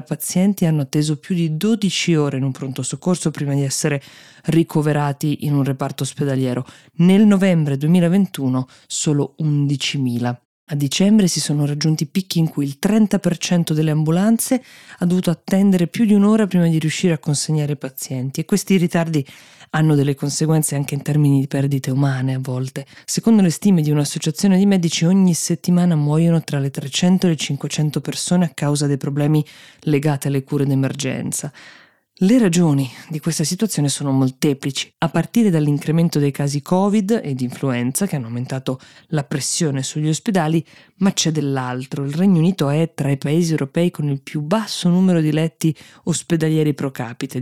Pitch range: 140-175 Hz